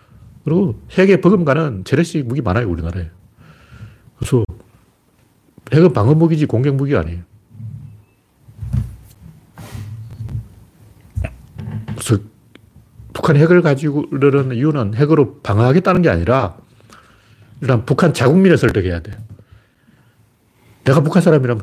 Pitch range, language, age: 110-150 Hz, Korean, 40-59